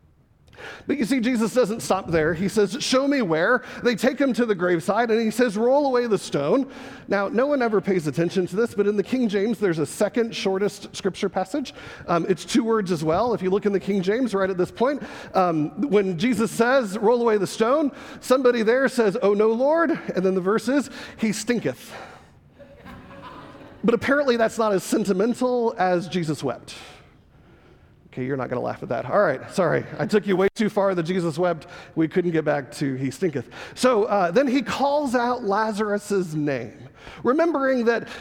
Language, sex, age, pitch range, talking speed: English, male, 40-59, 185-245 Hz, 200 wpm